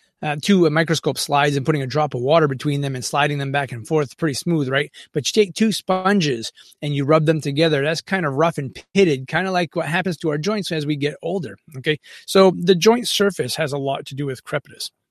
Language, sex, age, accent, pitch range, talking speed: English, male, 30-49, American, 150-200 Hz, 245 wpm